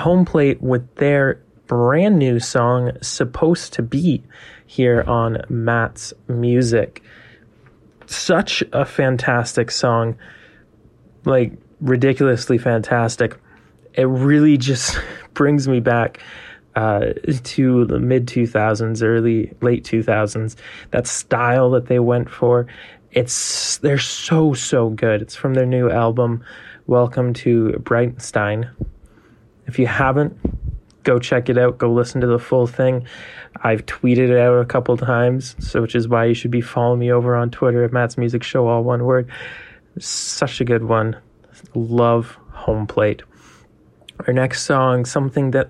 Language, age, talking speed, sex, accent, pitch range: English, 20-39, 135 wpm, male, American, 115-130 Hz